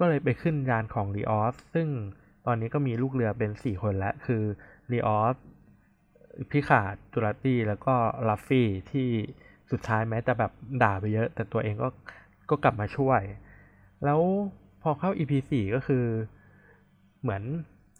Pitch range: 110-140 Hz